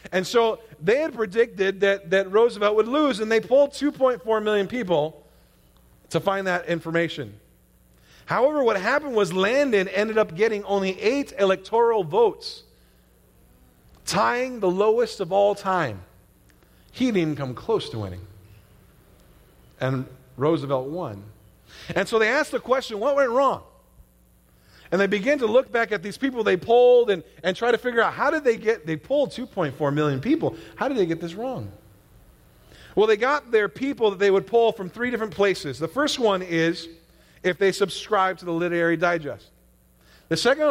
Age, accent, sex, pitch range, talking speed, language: 40-59, American, male, 160-230 Hz, 170 wpm, English